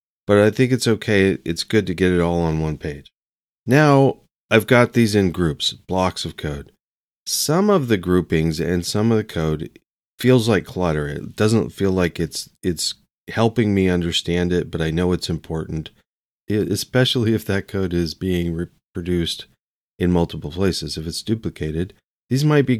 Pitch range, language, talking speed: 85-110 Hz, English, 175 wpm